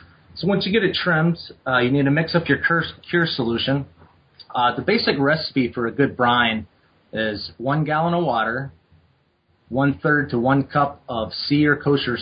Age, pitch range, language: 30-49, 110-135 Hz, English